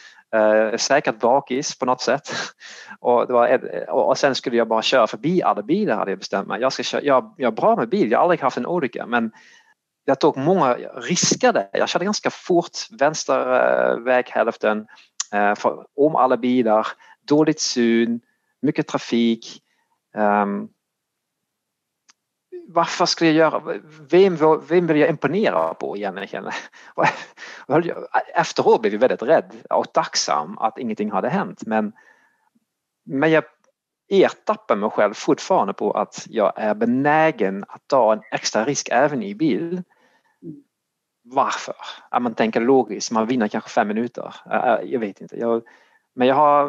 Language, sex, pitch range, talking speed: Swedish, male, 115-160 Hz, 140 wpm